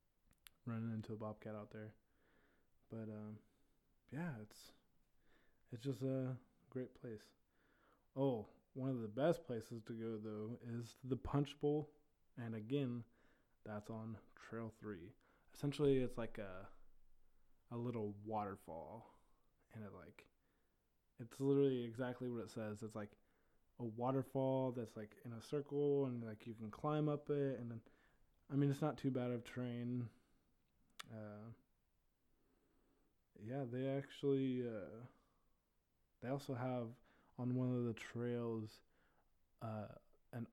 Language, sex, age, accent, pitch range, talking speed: English, male, 20-39, American, 110-130 Hz, 135 wpm